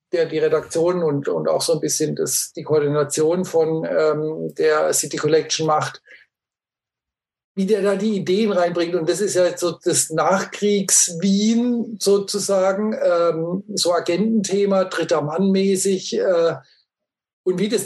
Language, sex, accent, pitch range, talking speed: German, male, German, 155-195 Hz, 150 wpm